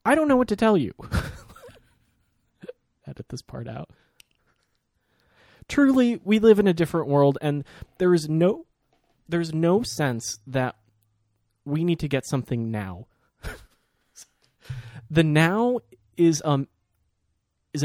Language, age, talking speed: English, 20-39, 125 wpm